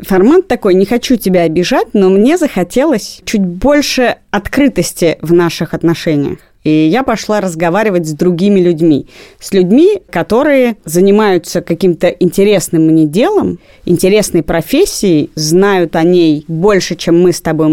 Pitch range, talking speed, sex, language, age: 165-210 Hz, 135 wpm, female, Russian, 30-49